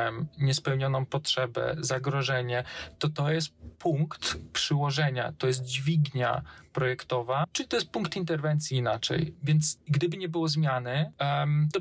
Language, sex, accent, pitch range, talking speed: Polish, male, native, 125-150 Hz, 120 wpm